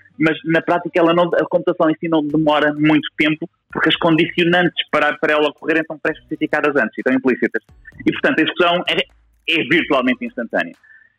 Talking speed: 170 wpm